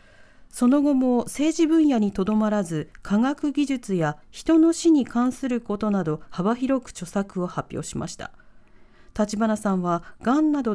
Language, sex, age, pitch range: Japanese, female, 40-59, 180-270 Hz